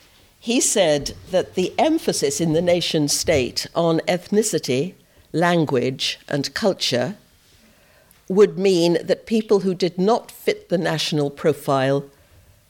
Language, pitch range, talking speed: English, 130-170 Hz, 115 wpm